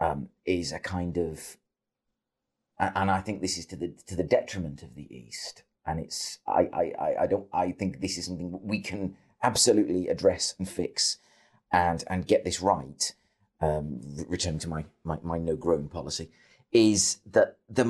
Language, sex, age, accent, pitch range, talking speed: English, male, 30-49, British, 80-95 Hz, 180 wpm